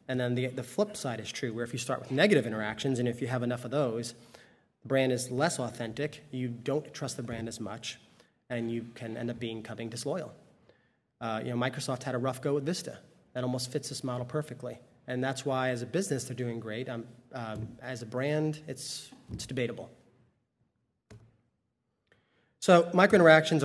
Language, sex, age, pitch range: English, male, 30-49, 120-140 Hz